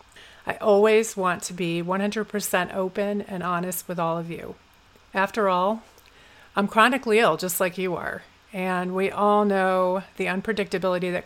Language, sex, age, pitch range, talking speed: English, female, 40-59, 175-195 Hz, 155 wpm